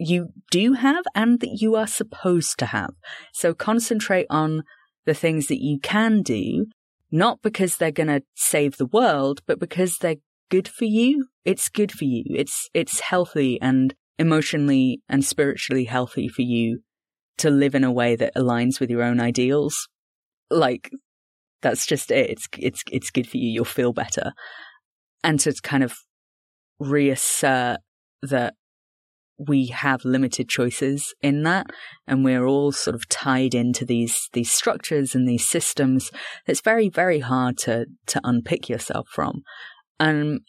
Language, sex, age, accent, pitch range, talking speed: English, female, 30-49, British, 130-185 Hz, 155 wpm